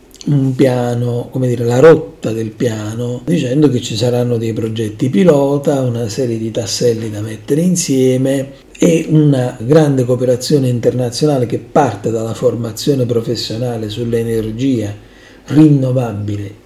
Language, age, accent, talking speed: Italian, 50-69, native, 125 wpm